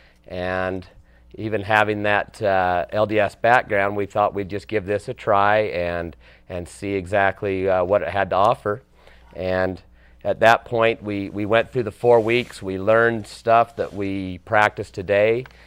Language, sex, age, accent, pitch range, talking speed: English, male, 40-59, American, 85-100 Hz, 165 wpm